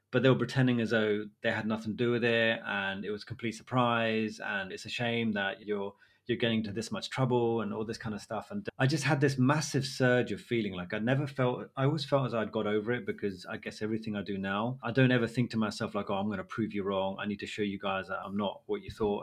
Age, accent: 30-49, British